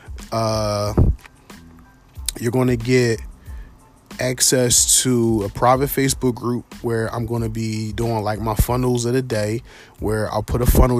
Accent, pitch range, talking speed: American, 105-120 Hz, 155 wpm